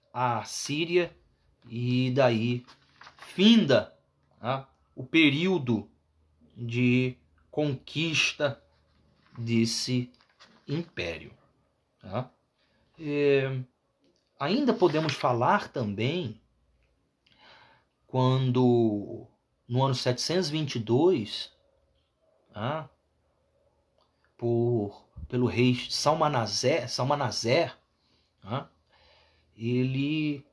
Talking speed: 60 wpm